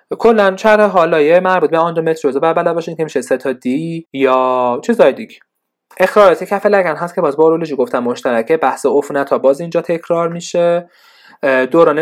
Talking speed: 170 wpm